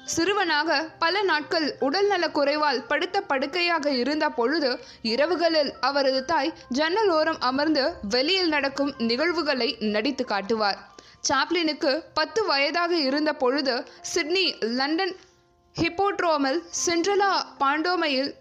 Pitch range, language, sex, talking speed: 255-335 Hz, Tamil, female, 100 wpm